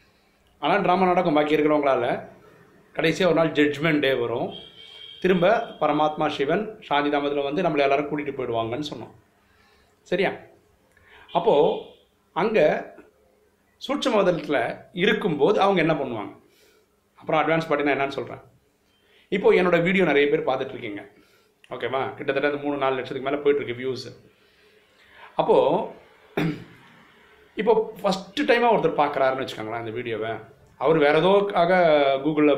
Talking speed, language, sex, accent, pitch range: 115 wpm, Tamil, male, native, 140-185 Hz